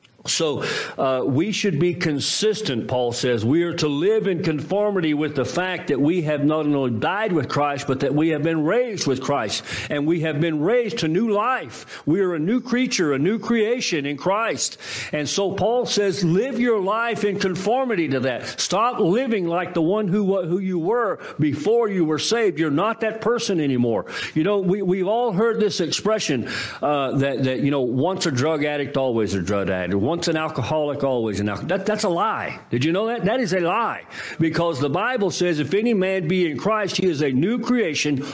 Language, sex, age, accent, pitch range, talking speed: English, male, 50-69, American, 145-205 Hz, 210 wpm